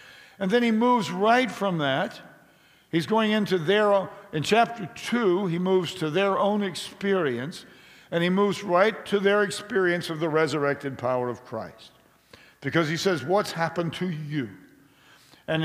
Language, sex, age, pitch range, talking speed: English, male, 50-69, 145-205 Hz, 155 wpm